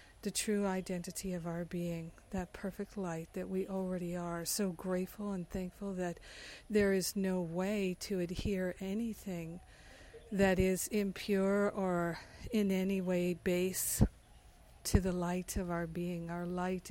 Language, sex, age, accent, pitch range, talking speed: English, female, 50-69, American, 175-195 Hz, 145 wpm